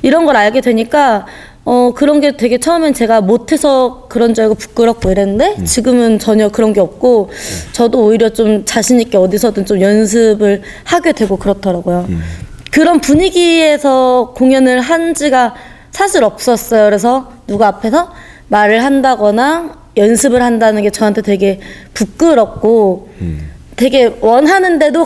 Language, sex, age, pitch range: Korean, female, 20-39, 205-280 Hz